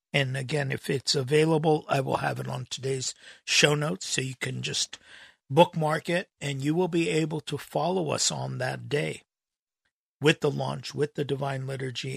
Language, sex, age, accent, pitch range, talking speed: English, male, 50-69, American, 125-155 Hz, 180 wpm